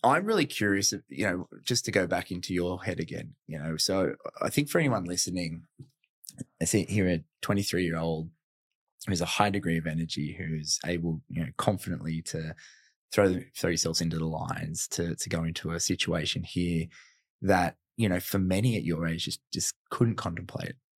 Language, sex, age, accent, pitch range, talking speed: English, male, 20-39, Australian, 80-95 Hz, 190 wpm